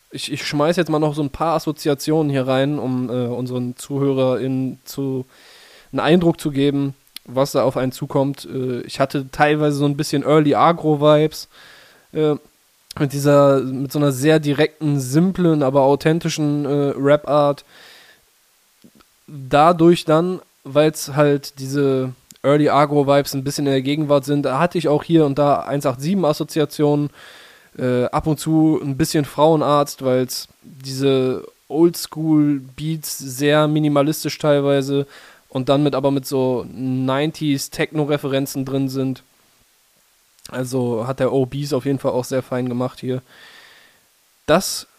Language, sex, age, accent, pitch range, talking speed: German, male, 10-29, German, 135-155 Hz, 140 wpm